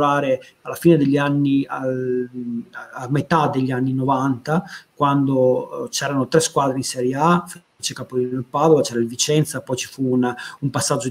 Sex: male